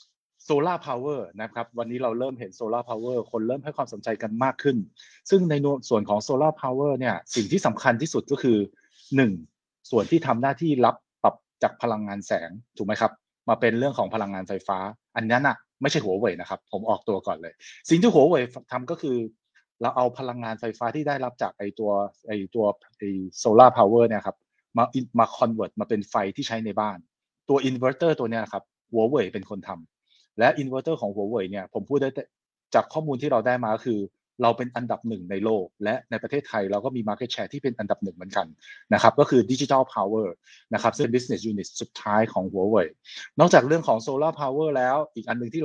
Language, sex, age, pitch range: Thai, male, 20-39, 105-130 Hz